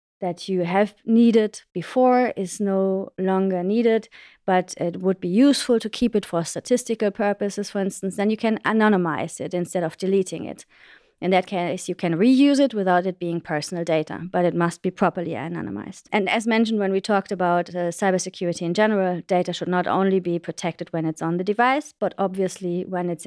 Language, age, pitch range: English, 30-49, 175-215 Hz